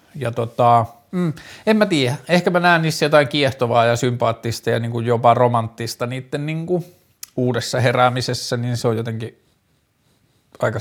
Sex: male